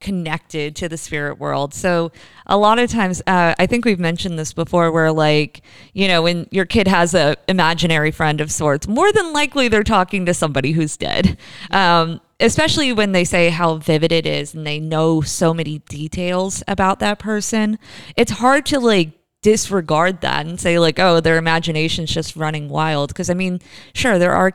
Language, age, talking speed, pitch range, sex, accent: English, 20-39, 190 wpm, 155-195 Hz, female, American